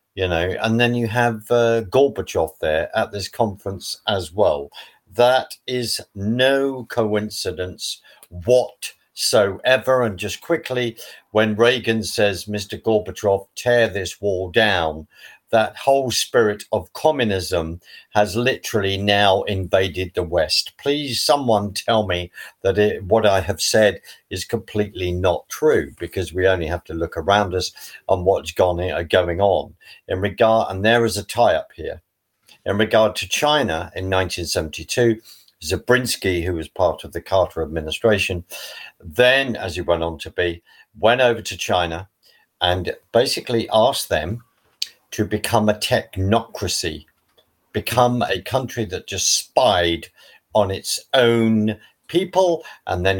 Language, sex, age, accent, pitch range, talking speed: English, male, 50-69, British, 90-115 Hz, 140 wpm